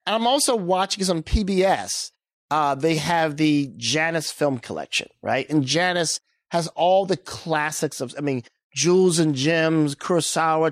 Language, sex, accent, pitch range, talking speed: English, male, American, 145-195 Hz, 155 wpm